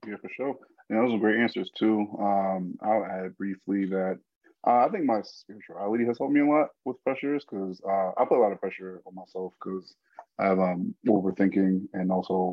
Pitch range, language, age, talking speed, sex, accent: 95-105 Hz, English, 20-39, 205 wpm, male, American